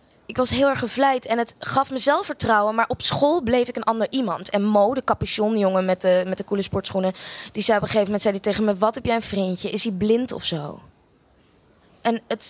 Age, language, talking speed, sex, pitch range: 20-39, Dutch, 230 wpm, female, 195-235 Hz